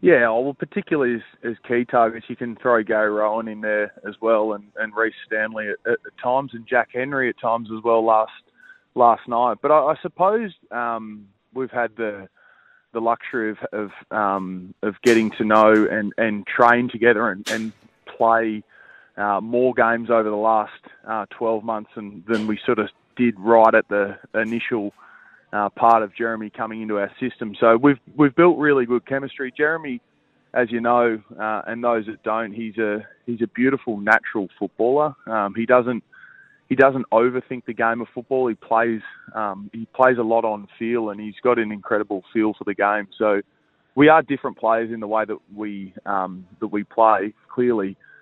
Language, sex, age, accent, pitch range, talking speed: English, male, 20-39, Australian, 105-125 Hz, 190 wpm